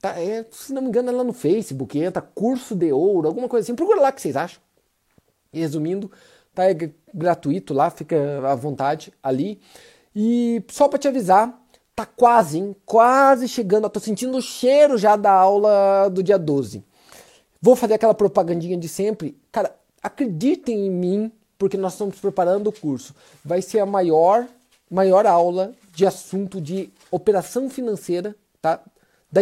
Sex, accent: male, Brazilian